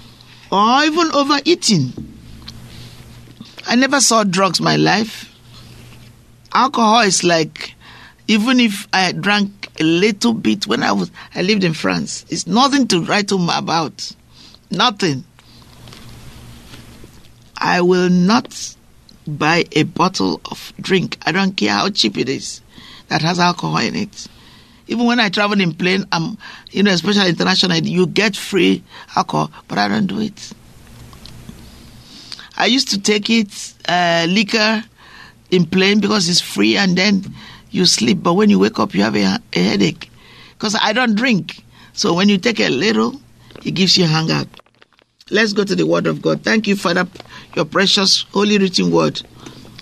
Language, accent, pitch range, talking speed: English, Nigerian, 155-215 Hz, 155 wpm